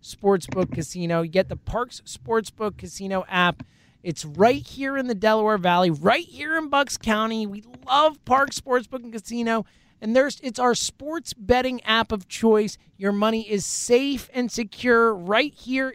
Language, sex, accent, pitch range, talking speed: English, male, American, 220-310 Hz, 165 wpm